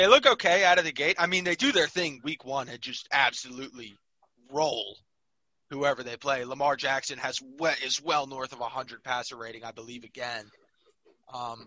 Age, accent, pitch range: 20-39, American, 120-155 Hz